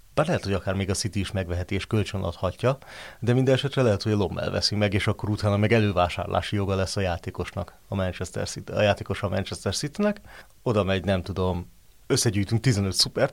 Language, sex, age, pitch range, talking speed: Hungarian, male, 30-49, 95-115 Hz, 200 wpm